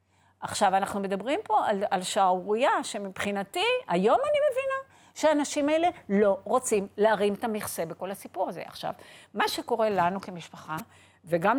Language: Hebrew